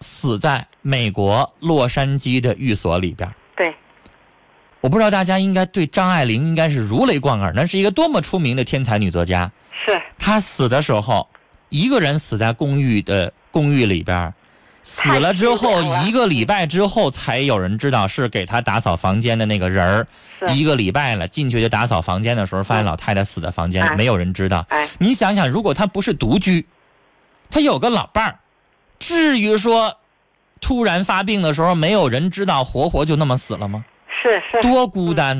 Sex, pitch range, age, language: male, 115-185 Hz, 20-39, Chinese